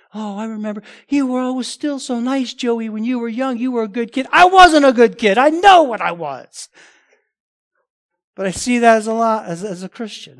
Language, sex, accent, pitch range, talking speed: English, male, American, 155-230 Hz, 230 wpm